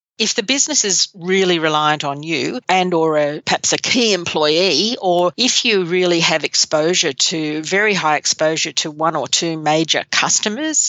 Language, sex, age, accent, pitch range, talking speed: English, female, 50-69, Australian, 155-185 Hz, 170 wpm